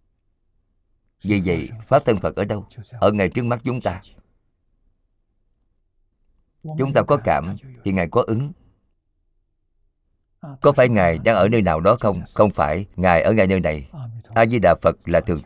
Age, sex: 50-69, male